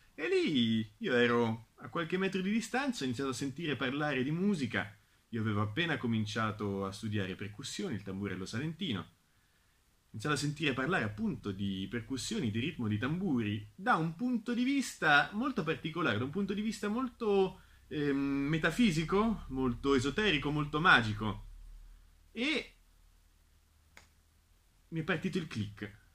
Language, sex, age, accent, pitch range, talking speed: Italian, male, 30-49, native, 105-175 Hz, 145 wpm